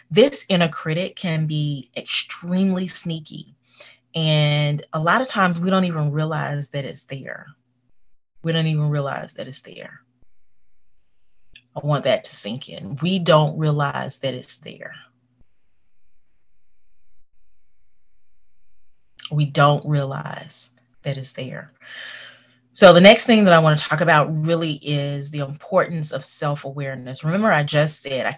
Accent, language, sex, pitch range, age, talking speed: American, English, female, 125-160 Hz, 30-49, 135 wpm